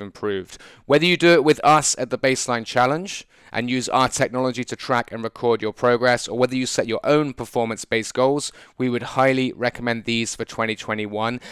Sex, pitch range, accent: male, 115-130 Hz, British